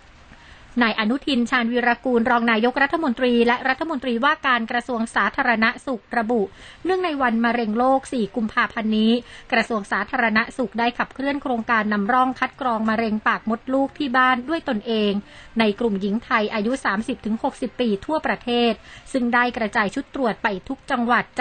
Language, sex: Thai, female